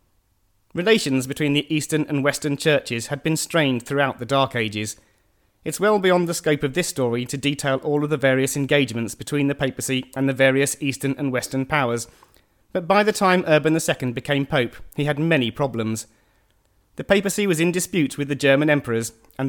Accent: British